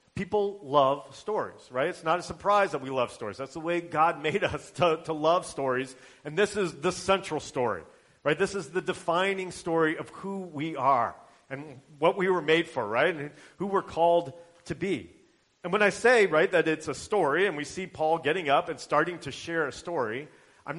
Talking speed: 210 wpm